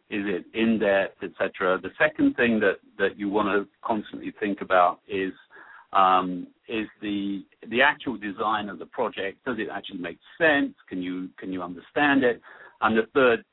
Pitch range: 95-125 Hz